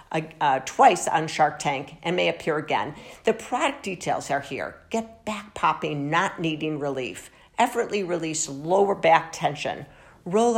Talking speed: 145 wpm